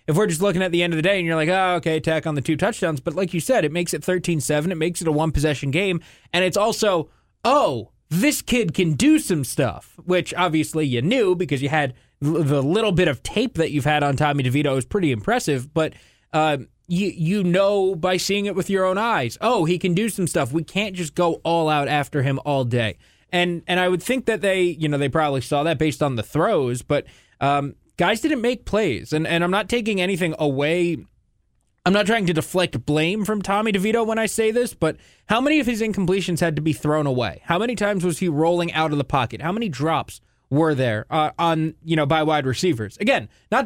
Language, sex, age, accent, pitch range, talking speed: English, male, 20-39, American, 150-190 Hz, 235 wpm